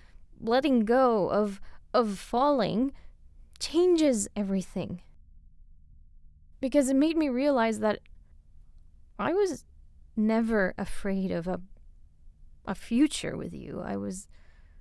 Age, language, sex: 20-39, English, female